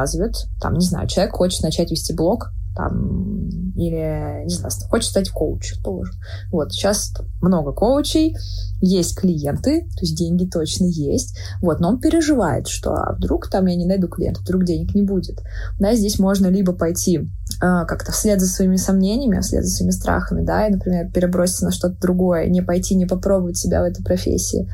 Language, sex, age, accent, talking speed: Russian, female, 20-39, native, 175 wpm